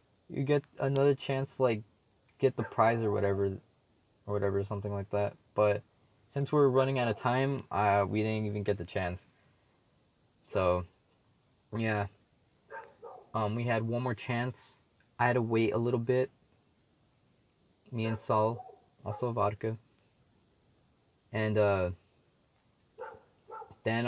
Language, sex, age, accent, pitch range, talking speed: English, male, 20-39, American, 100-125 Hz, 130 wpm